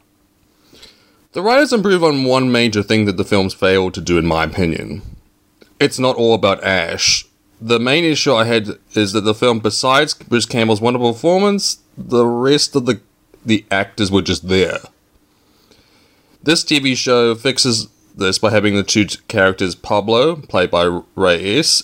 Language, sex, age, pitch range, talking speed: English, male, 20-39, 95-120 Hz, 160 wpm